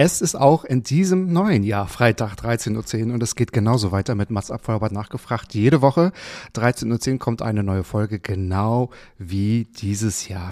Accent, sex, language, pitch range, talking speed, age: German, male, German, 105-125 Hz, 175 wpm, 30-49